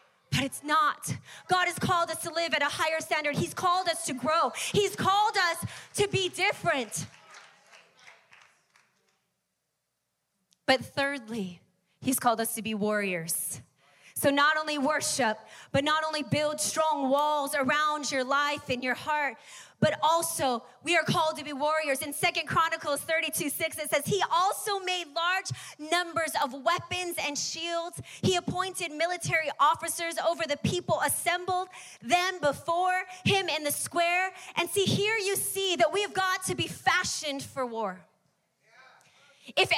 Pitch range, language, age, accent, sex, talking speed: 300-385 Hz, English, 30-49, American, female, 150 wpm